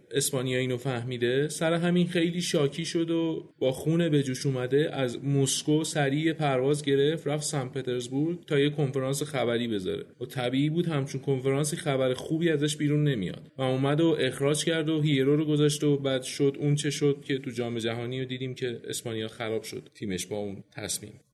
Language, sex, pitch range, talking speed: Persian, male, 125-150 Hz, 185 wpm